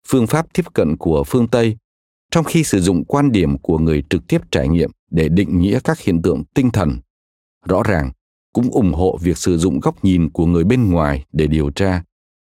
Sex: male